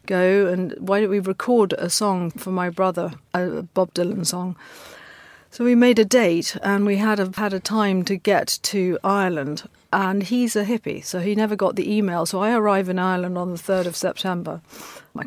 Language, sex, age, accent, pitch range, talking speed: English, female, 50-69, British, 180-200 Hz, 205 wpm